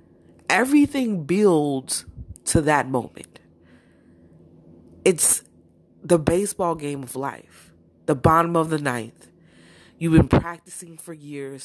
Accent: American